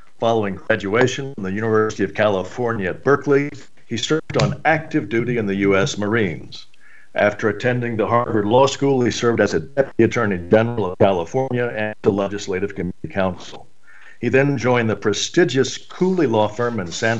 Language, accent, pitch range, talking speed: English, American, 100-125 Hz, 170 wpm